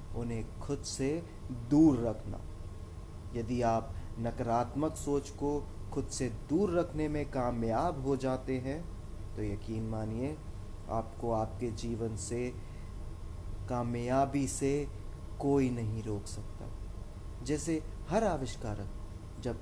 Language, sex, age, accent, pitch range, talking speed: Hindi, male, 30-49, native, 100-130 Hz, 110 wpm